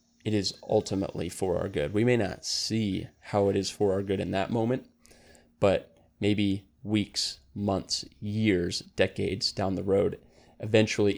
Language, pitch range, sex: English, 95-110 Hz, male